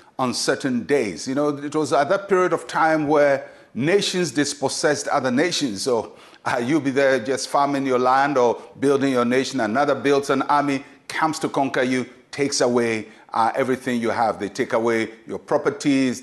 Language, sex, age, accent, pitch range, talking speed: English, male, 50-69, Nigerian, 125-150 Hz, 180 wpm